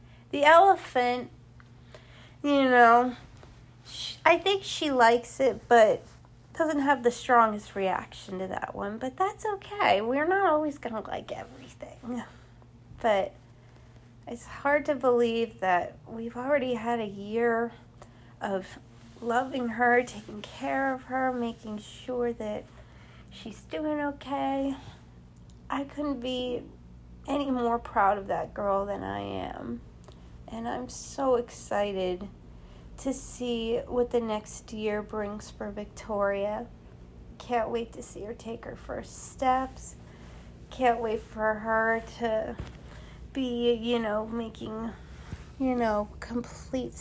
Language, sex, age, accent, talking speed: English, female, 30-49, American, 125 wpm